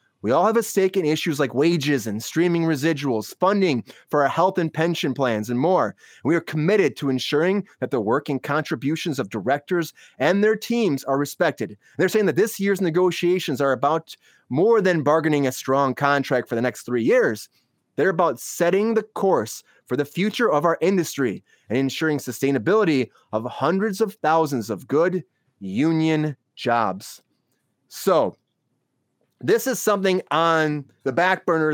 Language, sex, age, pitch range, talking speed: English, male, 30-49, 135-180 Hz, 165 wpm